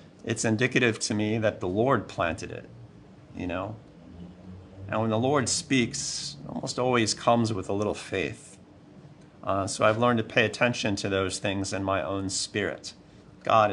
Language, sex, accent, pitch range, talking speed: English, male, American, 100-130 Hz, 170 wpm